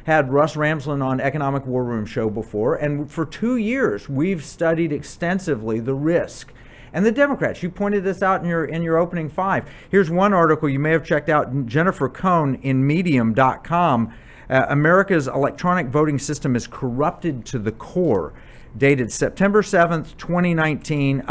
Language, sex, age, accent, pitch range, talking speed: English, male, 50-69, American, 130-165 Hz, 160 wpm